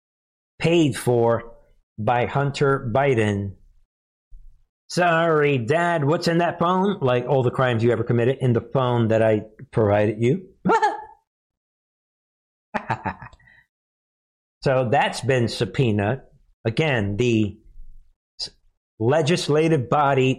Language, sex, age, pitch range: English, male, 50-69, 110-145 Hz